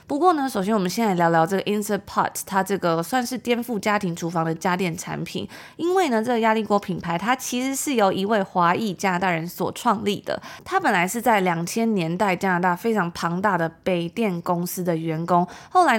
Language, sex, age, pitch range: Chinese, female, 20-39, 175-230 Hz